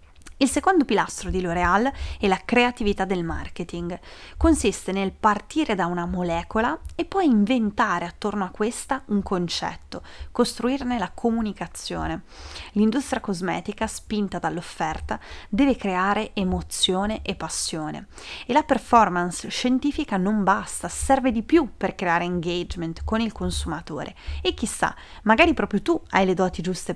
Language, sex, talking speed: Italian, female, 135 wpm